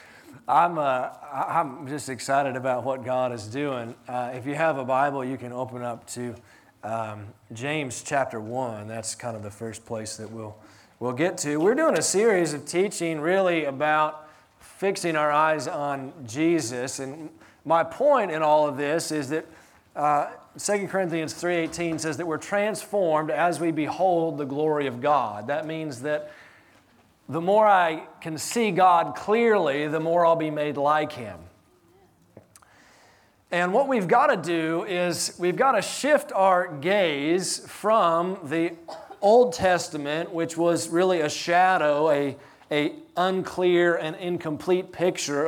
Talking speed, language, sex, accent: 155 wpm, English, male, American